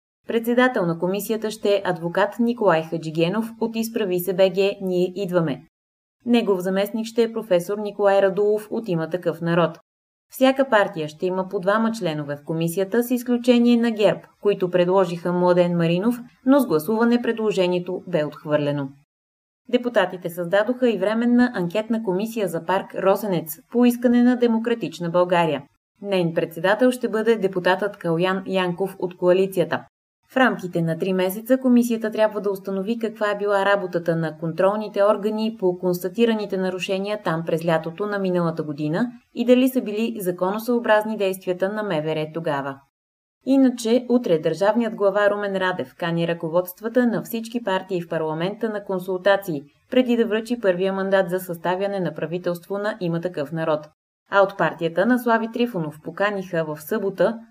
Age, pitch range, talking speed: 20-39, 175-220 Hz, 145 wpm